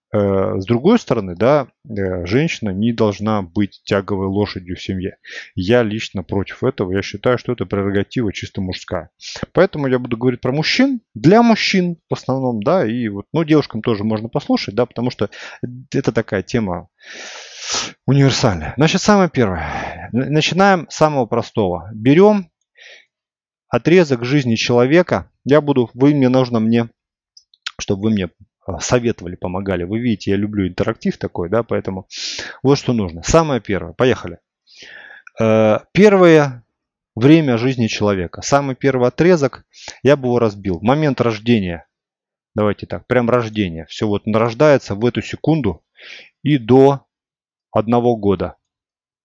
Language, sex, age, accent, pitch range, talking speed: Russian, male, 20-39, native, 100-135 Hz, 135 wpm